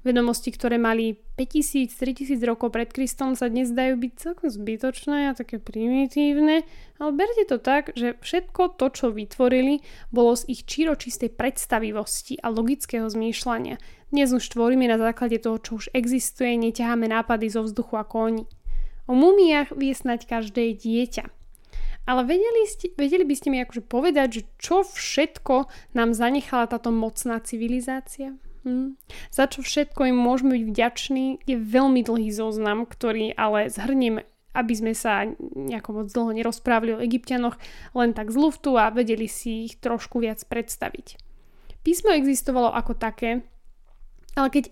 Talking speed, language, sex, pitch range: 150 wpm, Slovak, female, 230-275 Hz